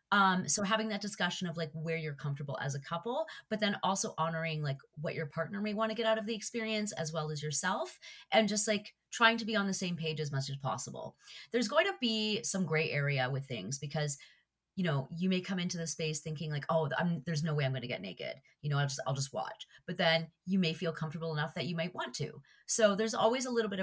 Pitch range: 155-205 Hz